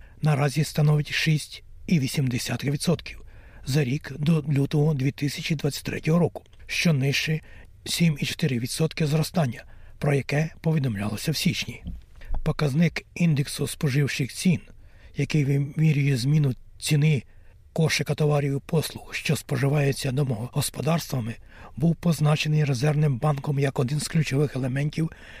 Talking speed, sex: 95 wpm, male